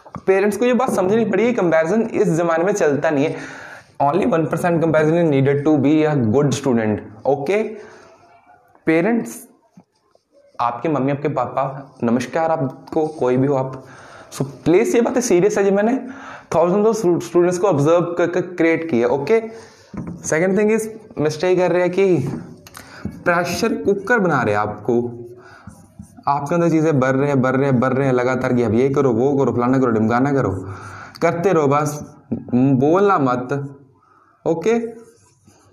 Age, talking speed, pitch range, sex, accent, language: 20-39, 125 wpm, 130-180 Hz, male, native, Hindi